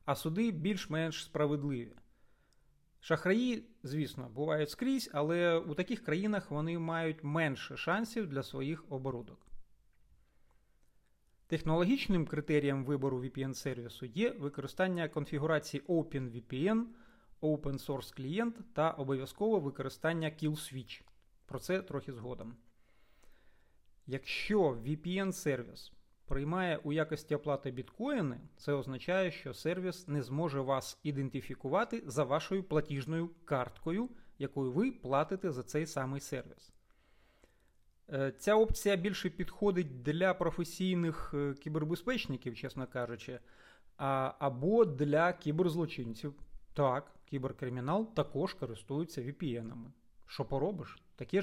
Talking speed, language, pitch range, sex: 100 wpm, Ukrainian, 135-175 Hz, male